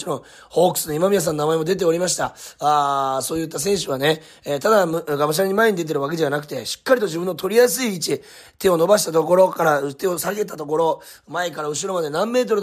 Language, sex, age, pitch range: Japanese, male, 30-49, 145-205 Hz